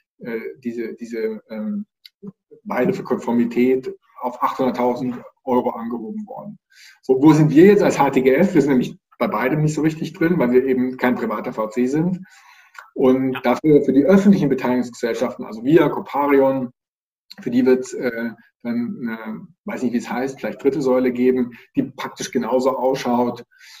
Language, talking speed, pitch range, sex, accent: German, 160 wpm, 125-155 Hz, male, German